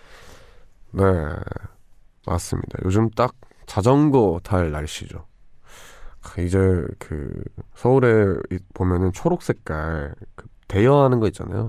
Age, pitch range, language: 20-39, 90-115 Hz, Korean